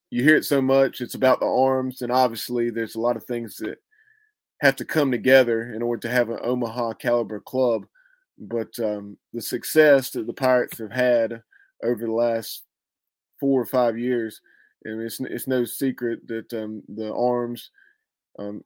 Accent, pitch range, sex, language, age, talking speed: American, 115-130 Hz, male, English, 20-39, 175 wpm